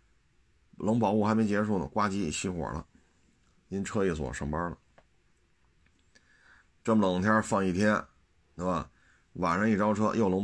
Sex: male